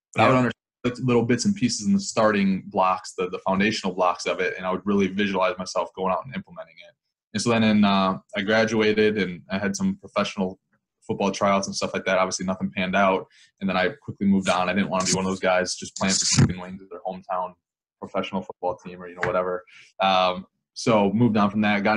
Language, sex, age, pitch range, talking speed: English, male, 20-39, 95-115 Hz, 240 wpm